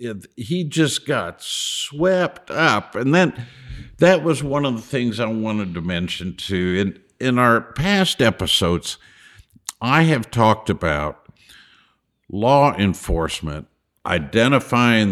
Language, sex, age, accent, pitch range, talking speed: English, male, 60-79, American, 85-120 Hz, 120 wpm